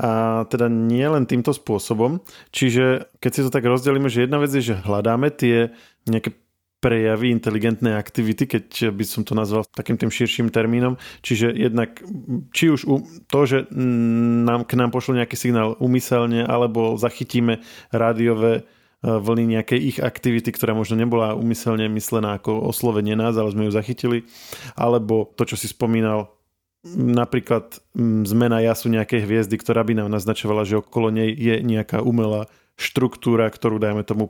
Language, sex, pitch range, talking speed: Slovak, male, 110-120 Hz, 155 wpm